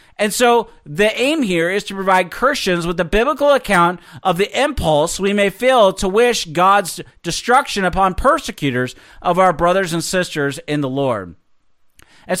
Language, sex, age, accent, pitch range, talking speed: English, male, 40-59, American, 165-215 Hz, 165 wpm